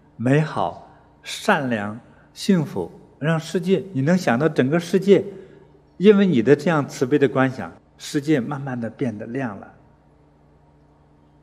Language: Chinese